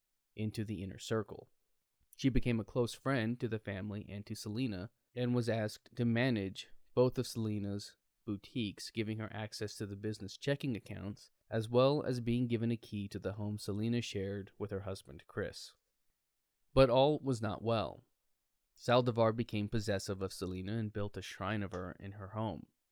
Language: English